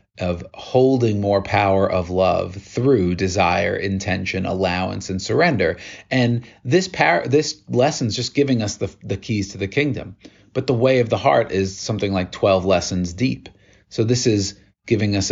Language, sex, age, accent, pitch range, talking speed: English, male, 30-49, American, 95-105 Hz, 170 wpm